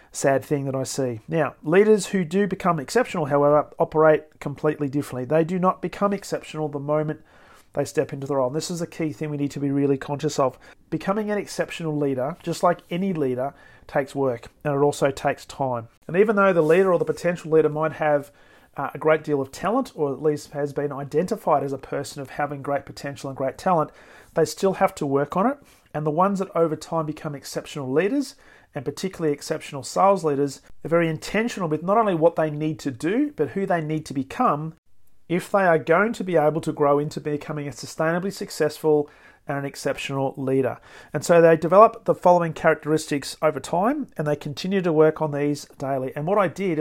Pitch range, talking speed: 145-175 Hz, 210 wpm